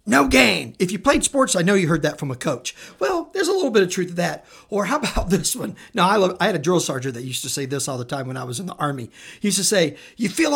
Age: 50-69